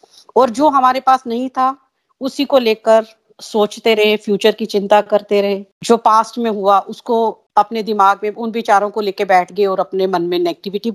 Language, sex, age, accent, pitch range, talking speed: Hindi, female, 40-59, native, 205-245 Hz, 190 wpm